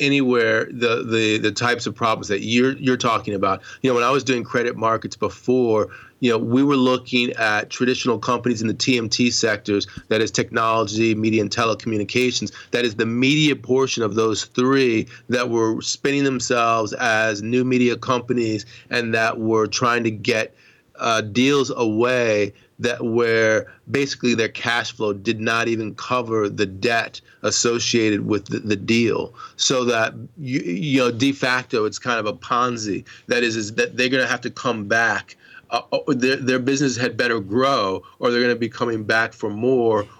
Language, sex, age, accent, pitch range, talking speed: English, male, 30-49, American, 110-125 Hz, 180 wpm